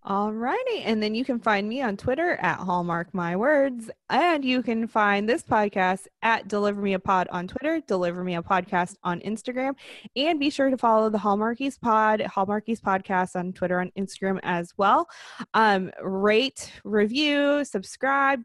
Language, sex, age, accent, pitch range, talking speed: English, female, 20-39, American, 185-245 Hz, 145 wpm